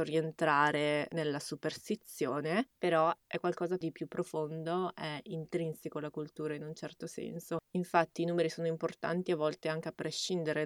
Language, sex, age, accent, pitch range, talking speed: Italian, female, 20-39, native, 155-170 Hz, 150 wpm